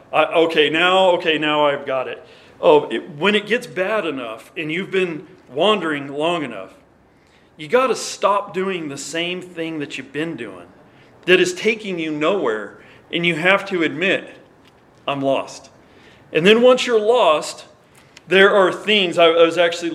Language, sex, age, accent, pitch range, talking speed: English, male, 40-59, American, 150-195 Hz, 170 wpm